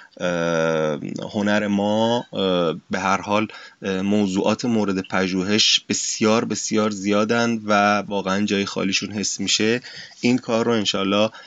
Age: 30-49